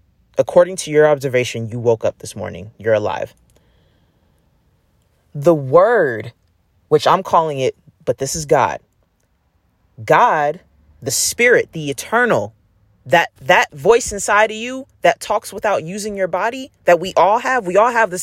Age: 20-39